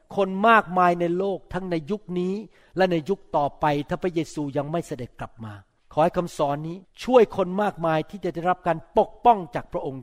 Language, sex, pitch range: Thai, male, 155-205 Hz